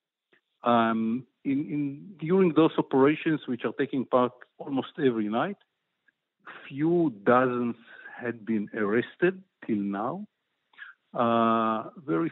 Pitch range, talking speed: 115-150 Hz, 95 wpm